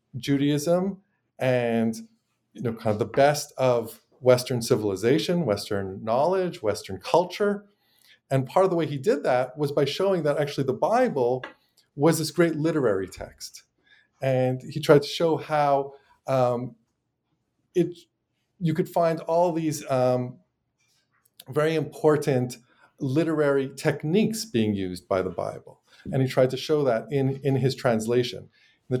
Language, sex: English, male